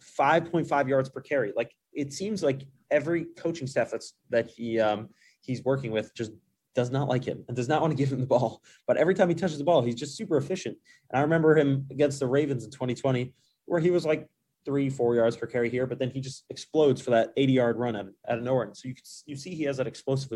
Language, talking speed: English, 255 wpm